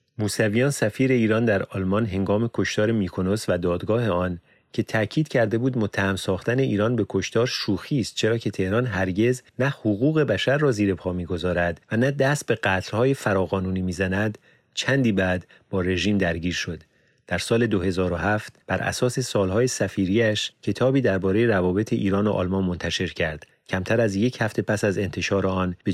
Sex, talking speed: male, 160 wpm